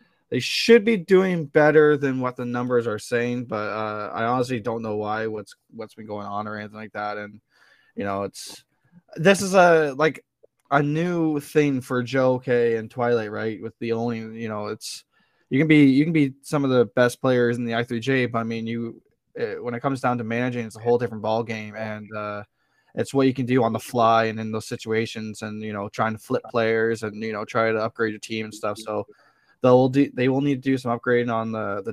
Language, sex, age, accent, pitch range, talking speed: English, male, 20-39, American, 110-130 Hz, 235 wpm